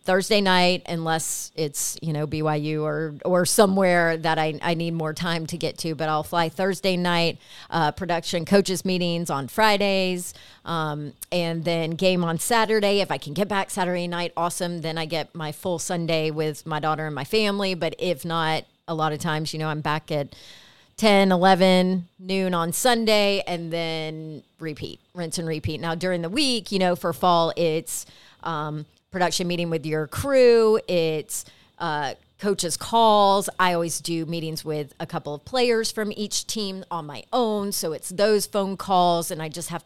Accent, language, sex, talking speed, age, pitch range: American, English, female, 185 wpm, 30-49, 160-190 Hz